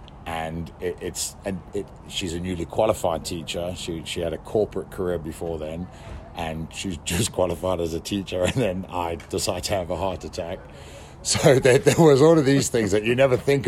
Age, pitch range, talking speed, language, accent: 50-69, 80-95 Hz, 200 wpm, English, British